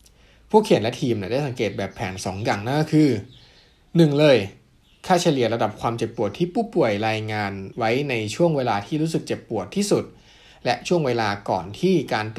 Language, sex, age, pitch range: Thai, male, 20-39, 105-135 Hz